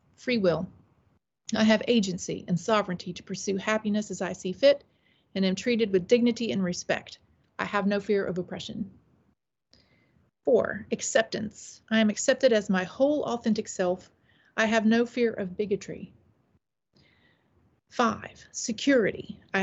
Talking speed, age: 140 wpm, 40-59